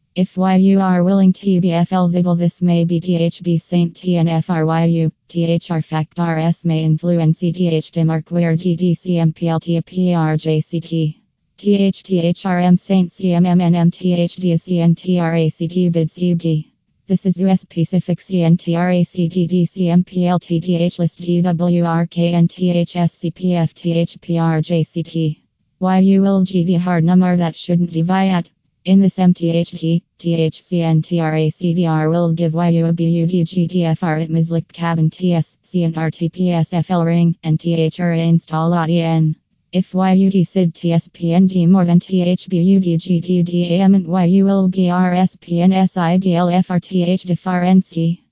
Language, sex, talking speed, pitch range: English, female, 120 wpm, 165-180 Hz